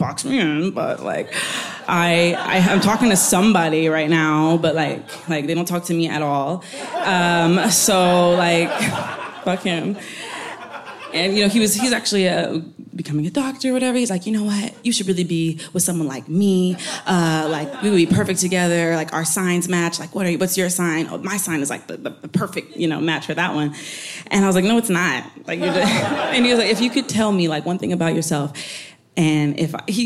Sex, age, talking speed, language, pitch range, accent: female, 20-39, 220 wpm, English, 160-190 Hz, American